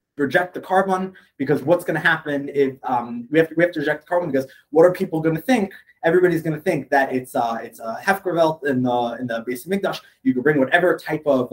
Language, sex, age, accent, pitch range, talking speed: English, male, 20-39, American, 130-175 Hz, 245 wpm